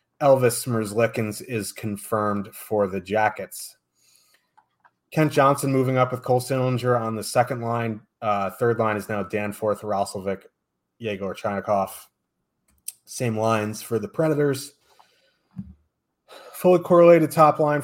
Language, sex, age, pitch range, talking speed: English, male, 30-49, 105-120 Hz, 120 wpm